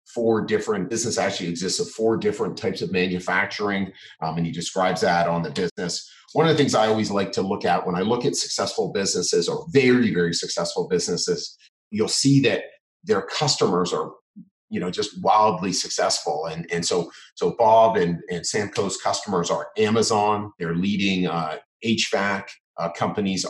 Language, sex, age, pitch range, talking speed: English, male, 40-59, 90-115 Hz, 175 wpm